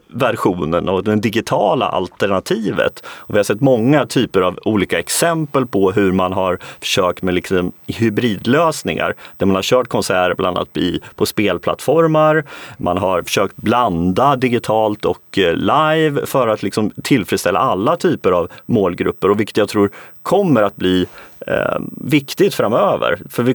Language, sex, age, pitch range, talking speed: Swedish, male, 30-49, 100-150 Hz, 140 wpm